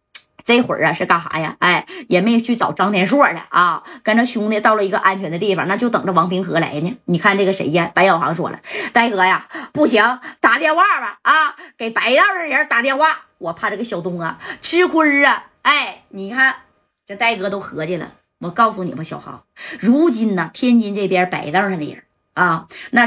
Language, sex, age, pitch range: Chinese, female, 20-39, 190-275 Hz